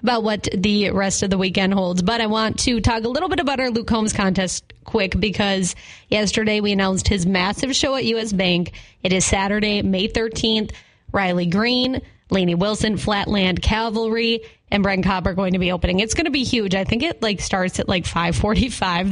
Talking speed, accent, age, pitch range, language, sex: 200 wpm, American, 20-39, 190-230 Hz, English, female